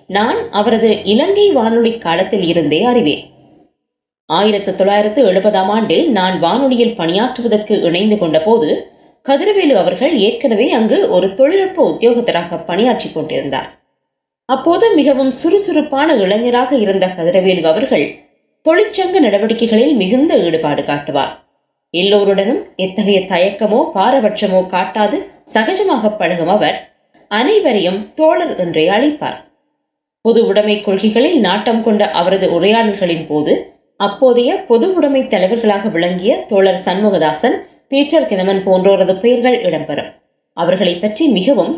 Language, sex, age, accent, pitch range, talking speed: Tamil, female, 20-39, native, 190-270 Hz, 105 wpm